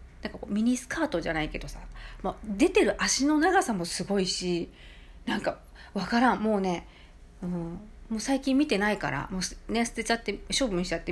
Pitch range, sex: 170-255 Hz, female